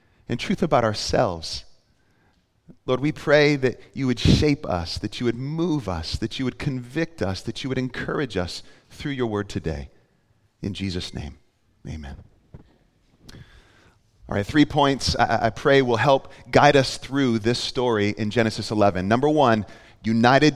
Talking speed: 160 wpm